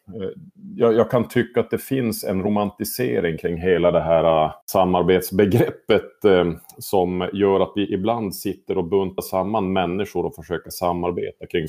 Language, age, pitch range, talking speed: Swedish, 30-49, 85-105 Hz, 140 wpm